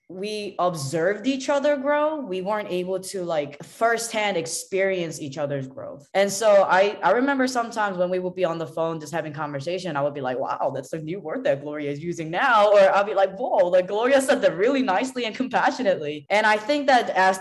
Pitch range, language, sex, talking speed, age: 150-195 Hz, English, female, 215 wpm, 20-39